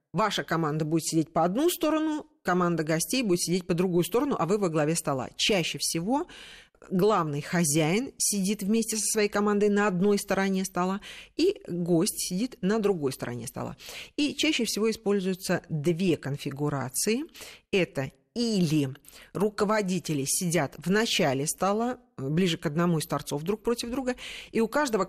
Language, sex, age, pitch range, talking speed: Russian, female, 40-59, 160-220 Hz, 150 wpm